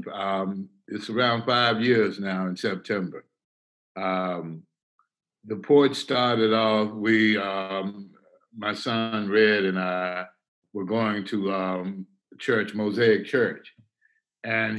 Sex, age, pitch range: male, 60-79, 95-110 Hz